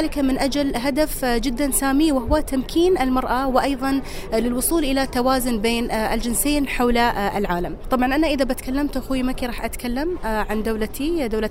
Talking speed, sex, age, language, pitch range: 145 wpm, female, 30-49, Arabic, 220-270 Hz